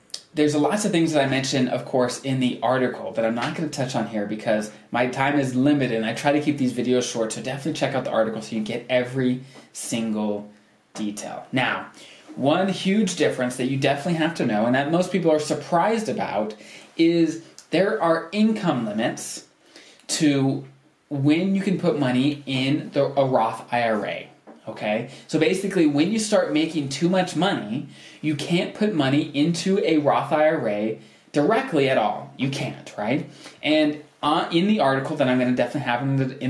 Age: 20-39